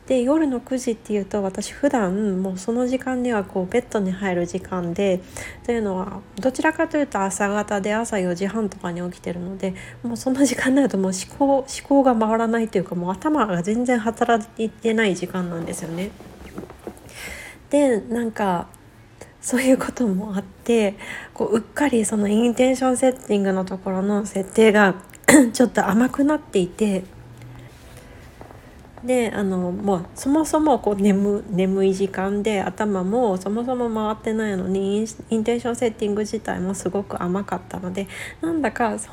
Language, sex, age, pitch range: Japanese, female, 40-59, 195-255 Hz